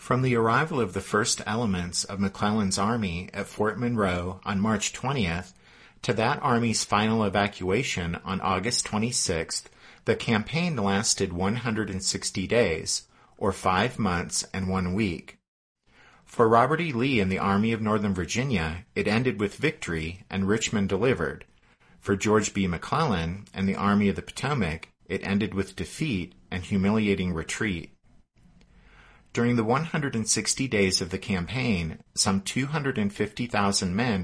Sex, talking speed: male, 140 wpm